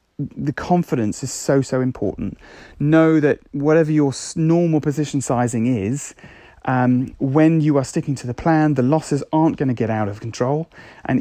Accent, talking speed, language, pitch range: British, 170 wpm, English, 120-145 Hz